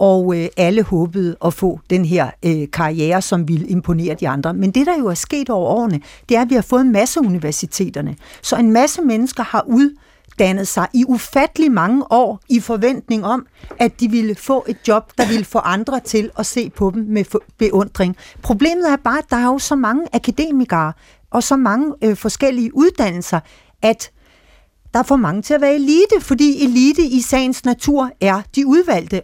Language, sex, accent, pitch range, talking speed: Danish, female, native, 195-255 Hz, 195 wpm